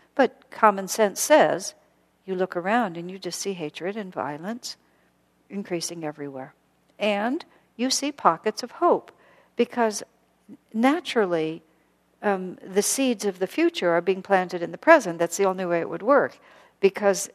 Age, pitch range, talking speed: 60-79, 165-205 Hz, 150 wpm